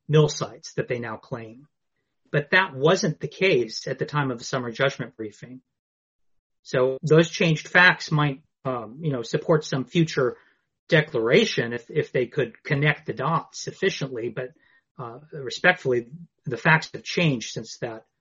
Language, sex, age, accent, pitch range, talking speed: English, male, 30-49, American, 120-150 Hz, 160 wpm